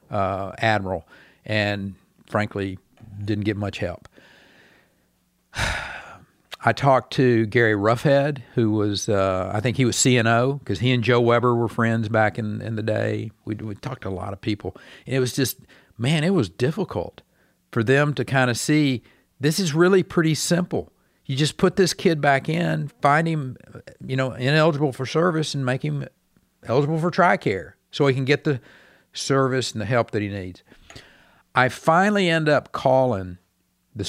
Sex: male